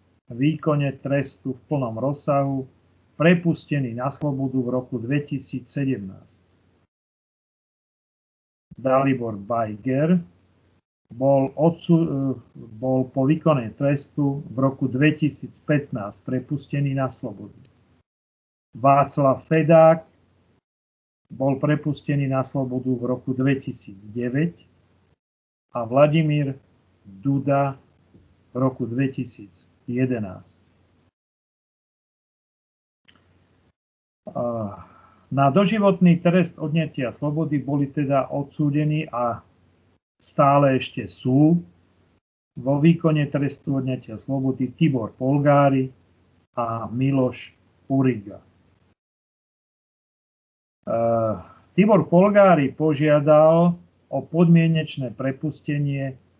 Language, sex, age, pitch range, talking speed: Slovak, male, 40-59, 110-145 Hz, 70 wpm